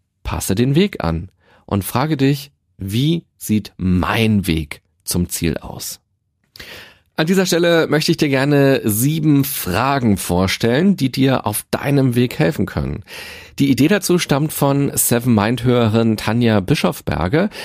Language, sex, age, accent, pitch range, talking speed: German, male, 40-59, German, 95-145 Hz, 140 wpm